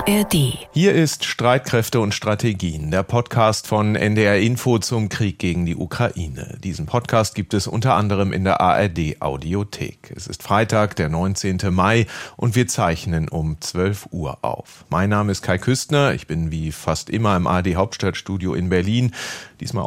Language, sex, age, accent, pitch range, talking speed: German, male, 40-59, German, 90-110 Hz, 155 wpm